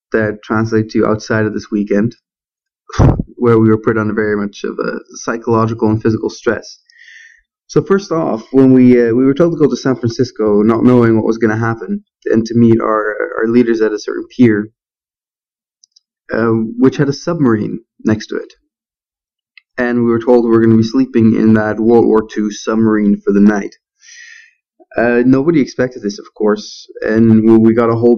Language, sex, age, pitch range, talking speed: English, male, 20-39, 110-135 Hz, 190 wpm